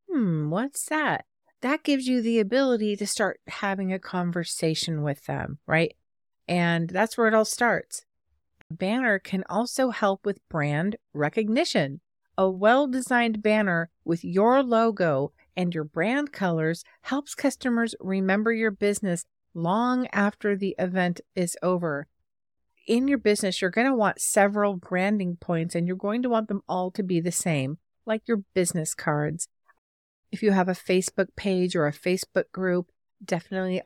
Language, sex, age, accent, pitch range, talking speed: English, female, 50-69, American, 170-215 Hz, 155 wpm